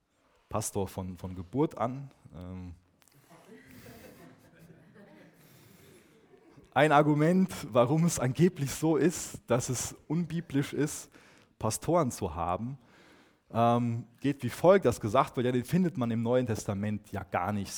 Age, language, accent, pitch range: 30-49, German, German, 100-135 Hz